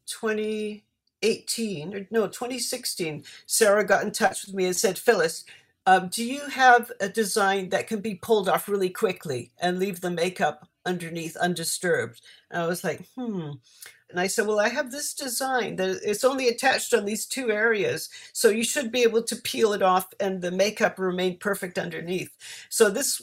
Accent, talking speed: American, 180 wpm